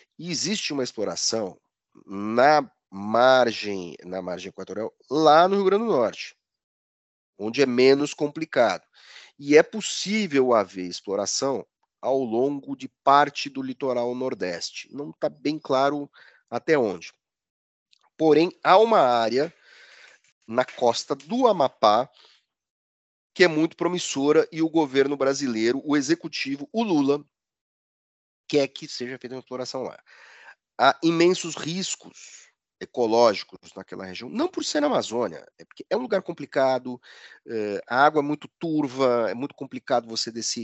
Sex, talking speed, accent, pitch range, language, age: male, 135 wpm, Brazilian, 125-165 Hz, Portuguese, 40-59